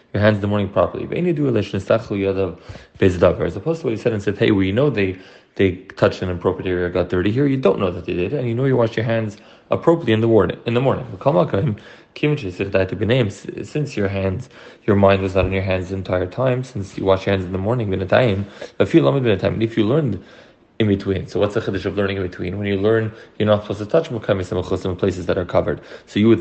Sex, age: male, 20-39